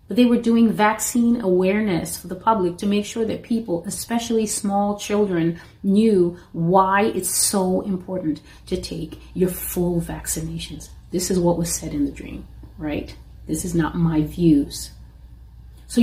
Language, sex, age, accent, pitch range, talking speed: English, female, 30-49, American, 170-225 Hz, 155 wpm